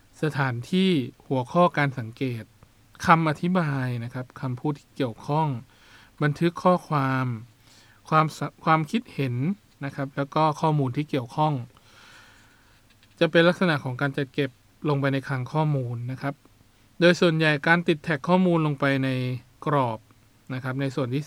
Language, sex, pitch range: Thai, male, 120-150 Hz